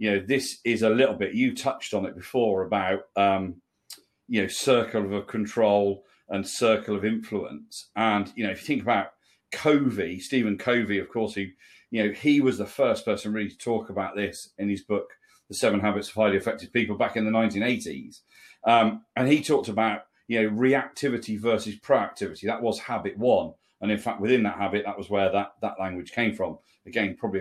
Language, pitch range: English, 100-120 Hz